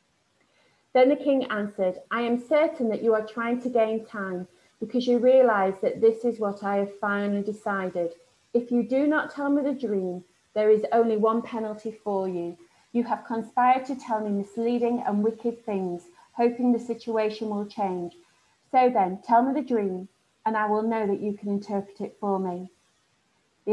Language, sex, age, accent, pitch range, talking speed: English, female, 30-49, British, 200-235 Hz, 185 wpm